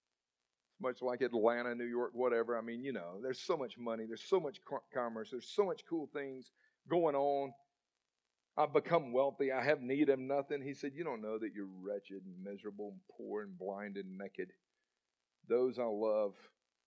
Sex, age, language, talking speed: male, 50-69, English, 185 wpm